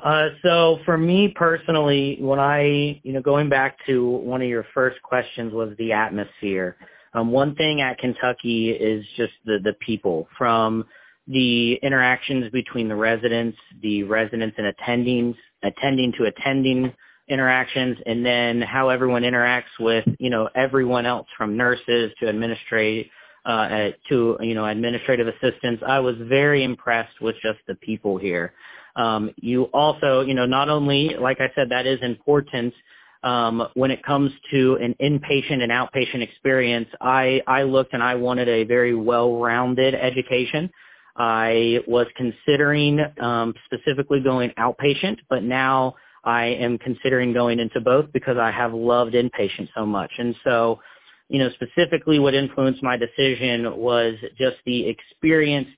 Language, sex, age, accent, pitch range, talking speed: English, male, 40-59, American, 115-135 Hz, 150 wpm